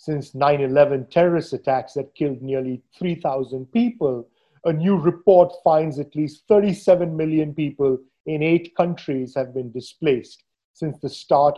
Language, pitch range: English, 130-165 Hz